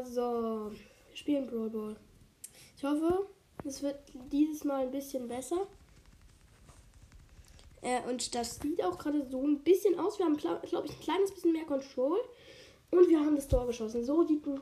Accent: German